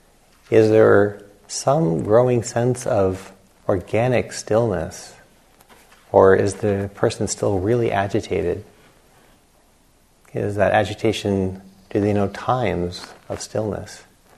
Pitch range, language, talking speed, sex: 95-105 Hz, English, 100 wpm, male